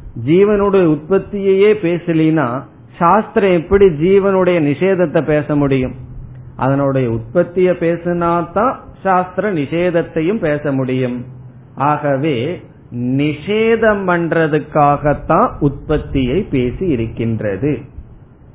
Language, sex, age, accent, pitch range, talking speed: Tamil, male, 50-69, native, 130-175 Hz, 70 wpm